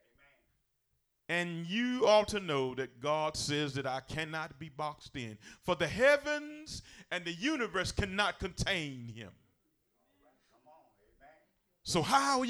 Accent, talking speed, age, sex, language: American, 125 wpm, 40-59, male, English